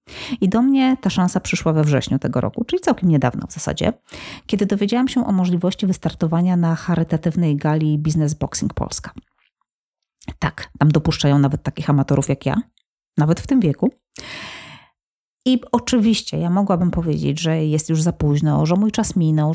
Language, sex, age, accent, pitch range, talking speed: Polish, female, 30-49, native, 155-195 Hz, 165 wpm